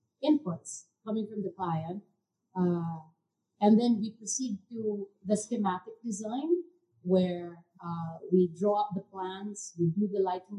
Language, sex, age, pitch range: English, female, 30-49, 185-230 Hz